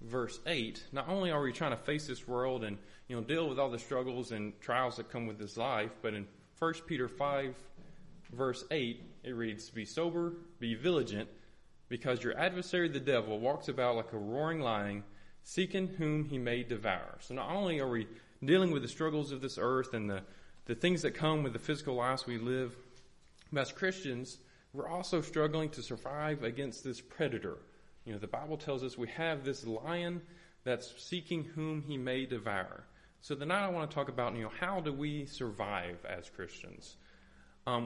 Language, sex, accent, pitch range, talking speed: English, male, American, 115-155 Hz, 190 wpm